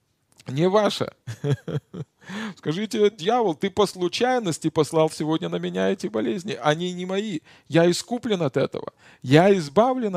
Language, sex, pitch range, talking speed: Russian, male, 125-170 Hz, 130 wpm